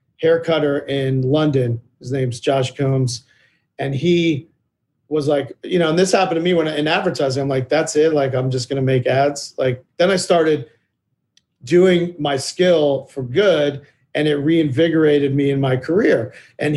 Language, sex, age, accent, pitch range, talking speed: English, male, 40-59, American, 135-165 Hz, 180 wpm